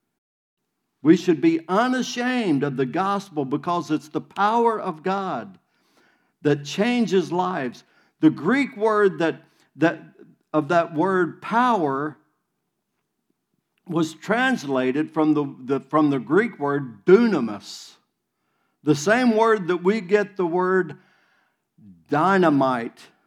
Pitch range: 160-245 Hz